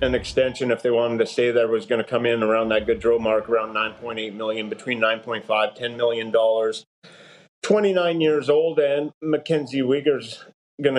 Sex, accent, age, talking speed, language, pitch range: male, American, 30-49, 200 wpm, English, 120-145 Hz